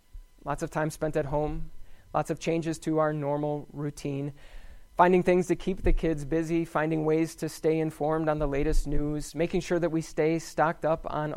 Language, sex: English, male